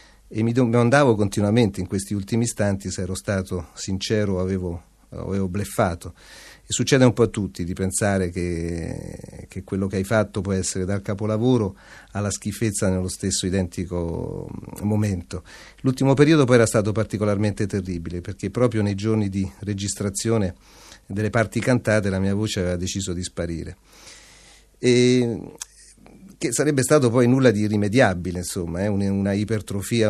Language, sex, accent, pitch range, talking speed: Italian, male, native, 95-110 Hz, 150 wpm